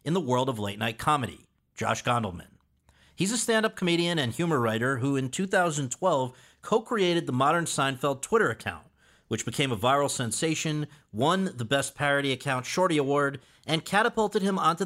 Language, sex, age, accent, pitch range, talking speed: English, male, 40-59, American, 115-155 Hz, 160 wpm